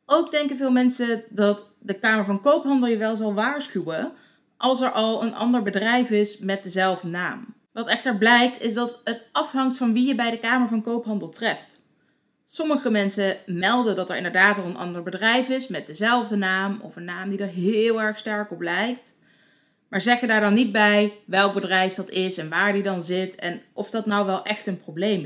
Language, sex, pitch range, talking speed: Dutch, female, 185-240 Hz, 205 wpm